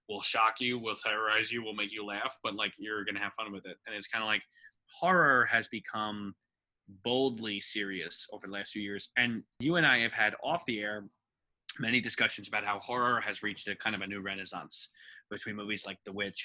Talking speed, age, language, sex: 220 wpm, 20-39, English, male